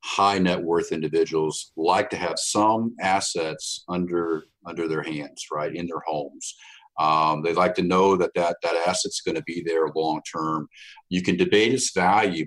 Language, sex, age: English, male, 50-69